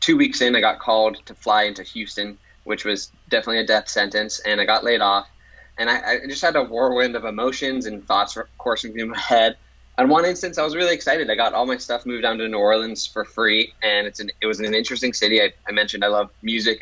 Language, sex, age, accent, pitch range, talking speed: English, male, 10-29, American, 105-125 Hz, 250 wpm